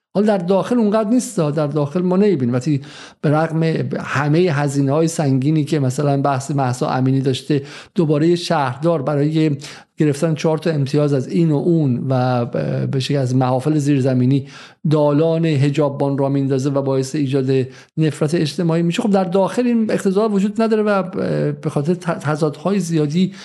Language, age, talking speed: Persian, 50-69, 155 wpm